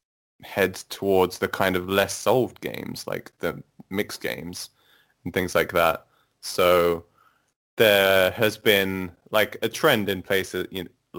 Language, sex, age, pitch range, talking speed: English, male, 20-39, 90-100 Hz, 145 wpm